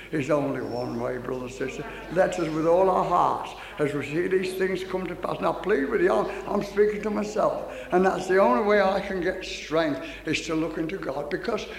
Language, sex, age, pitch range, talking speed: English, male, 60-79, 180-270 Hz, 230 wpm